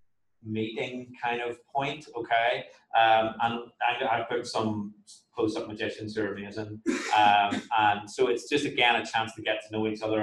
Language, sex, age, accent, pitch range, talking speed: English, male, 30-49, British, 110-160 Hz, 175 wpm